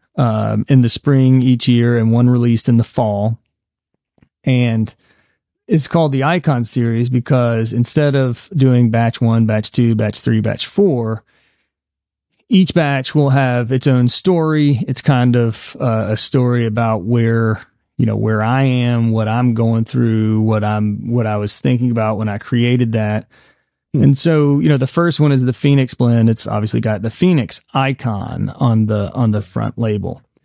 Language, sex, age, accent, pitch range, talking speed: English, male, 30-49, American, 110-130 Hz, 175 wpm